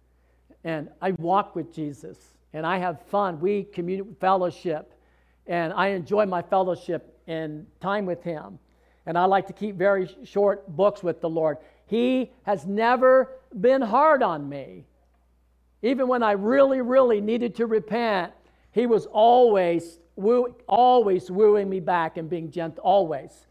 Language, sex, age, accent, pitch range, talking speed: English, male, 50-69, American, 140-205 Hz, 145 wpm